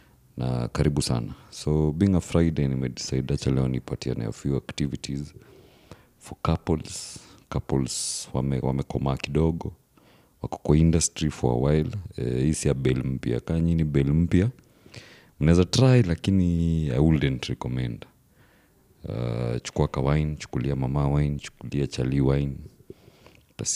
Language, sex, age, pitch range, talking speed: English, male, 40-59, 65-85 Hz, 135 wpm